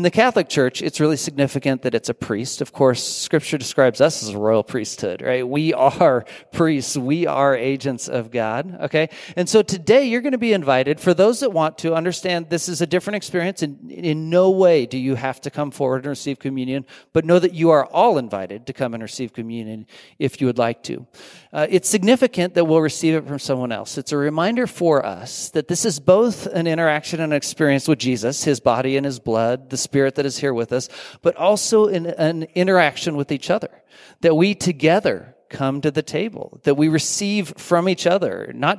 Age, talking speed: 40-59, 215 wpm